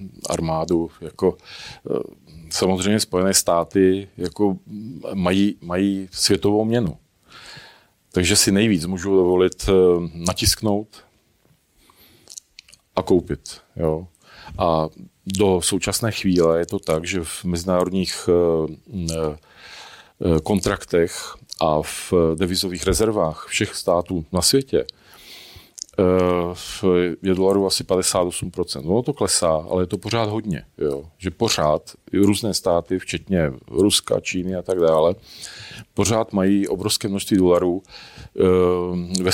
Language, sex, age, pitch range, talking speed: Czech, male, 40-59, 90-100 Hz, 100 wpm